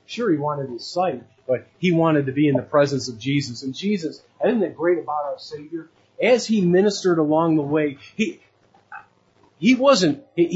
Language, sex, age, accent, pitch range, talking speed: English, male, 40-59, American, 150-200 Hz, 190 wpm